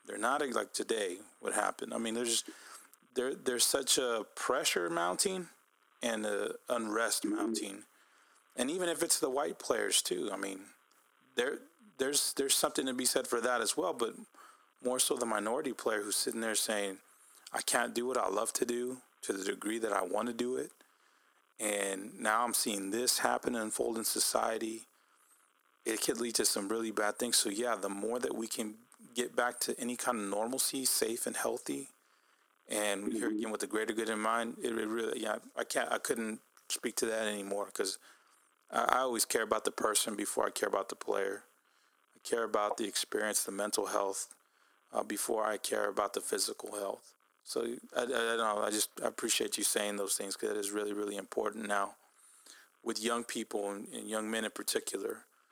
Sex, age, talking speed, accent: male, 30-49, 195 wpm, American